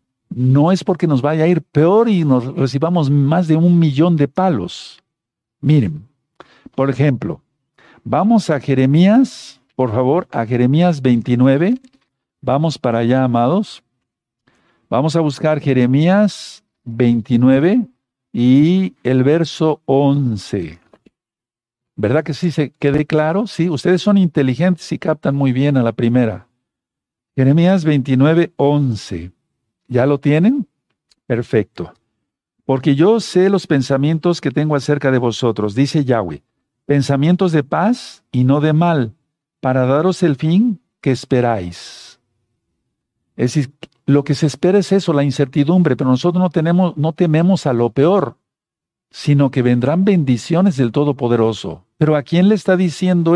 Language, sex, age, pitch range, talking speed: Spanish, male, 50-69, 130-170 Hz, 135 wpm